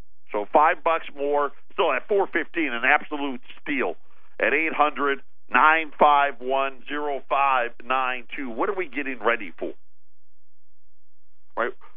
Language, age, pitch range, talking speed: English, 50-69, 105-145 Hz, 140 wpm